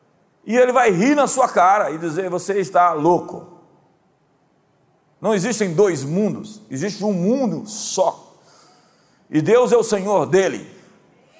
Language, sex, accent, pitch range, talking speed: Portuguese, male, Brazilian, 175-225 Hz, 135 wpm